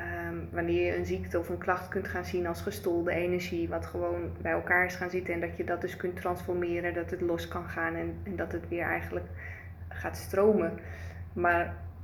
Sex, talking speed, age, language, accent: female, 205 wpm, 20-39, Dutch, Dutch